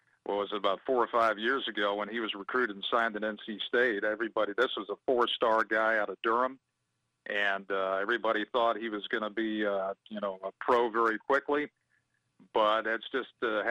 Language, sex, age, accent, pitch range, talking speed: English, male, 50-69, American, 105-115 Hz, 205 wpm